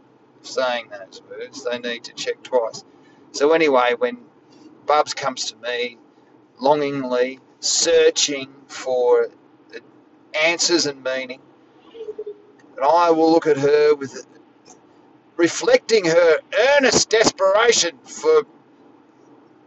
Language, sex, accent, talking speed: English, male, Australian, 105 wpm